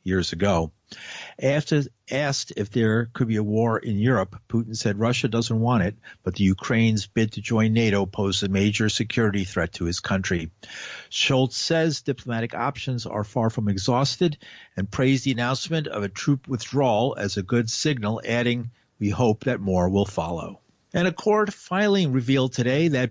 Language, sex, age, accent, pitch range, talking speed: English, male, 50-69, American, 110-135 Hz, 175 wpm